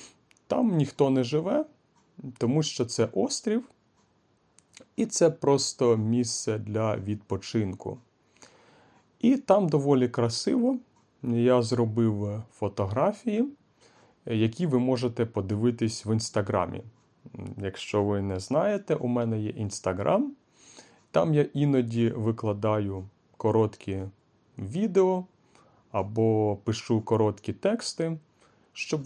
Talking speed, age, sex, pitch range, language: 95 wpm, 30-49, male, 110-150 Hz, Ukrainian